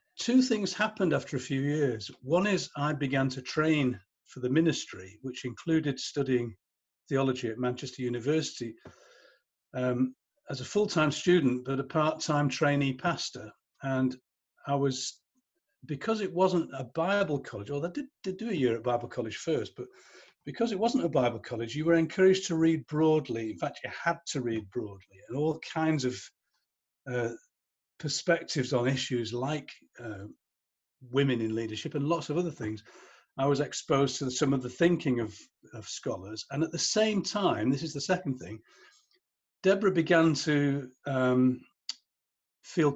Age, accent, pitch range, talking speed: 40-59, British, 130-175 Hz, 165 wpm